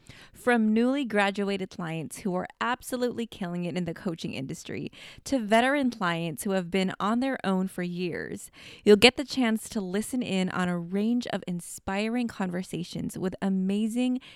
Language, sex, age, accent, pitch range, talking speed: English, female, 20-39, American, 185-235 Hz, 165 wpm